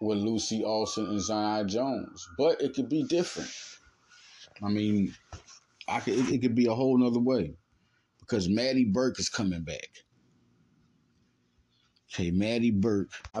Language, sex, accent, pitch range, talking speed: English, male, American, 95-125 Hz, 130 wpm